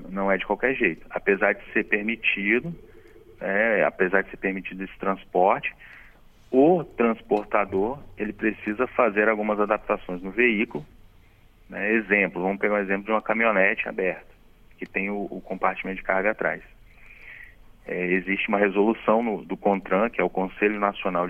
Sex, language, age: male, Portuguese, 30-49